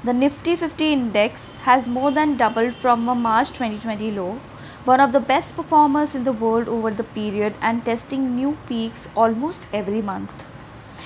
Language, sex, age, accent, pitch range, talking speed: English, female, 20-39, Indian, 215-275 Hz, 170 wpm